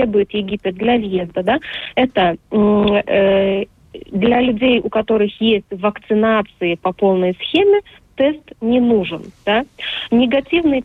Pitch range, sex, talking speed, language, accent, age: 195-240 Hz, female, 110 wpm, Russian, native, 30-49